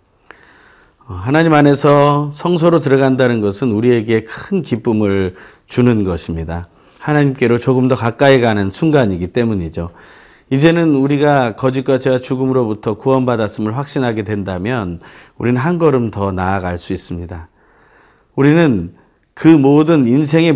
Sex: male